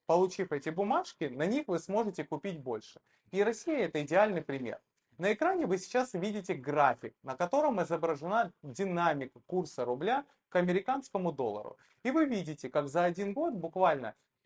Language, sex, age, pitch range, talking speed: Russian, male, 20-39, 150-215 Hz, 155 wpm